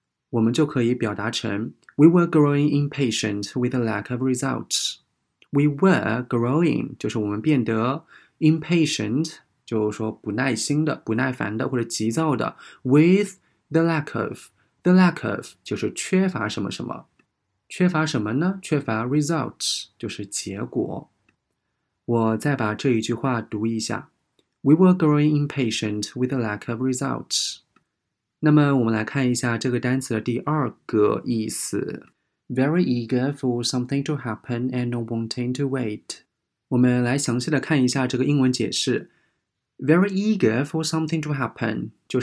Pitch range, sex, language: 115-150 Hz, male, Chinese